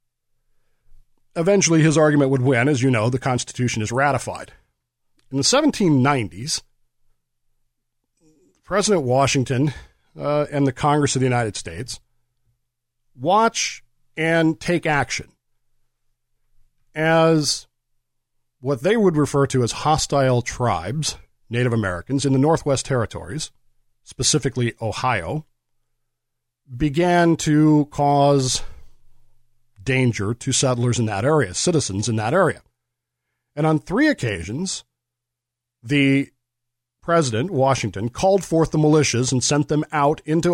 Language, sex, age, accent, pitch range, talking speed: English, male, 50-69, American, 120-150 Hz, 110 wpm